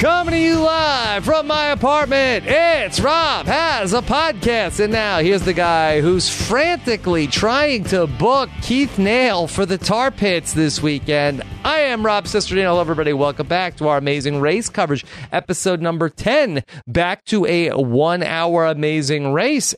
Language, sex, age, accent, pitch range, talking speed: English, male, 30-49, American, 120-200 Hz, 160 wpm